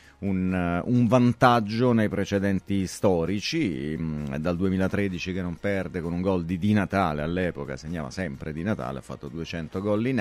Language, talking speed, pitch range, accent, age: Italian, 160 wpm, 95-120 Hz, native, 30-49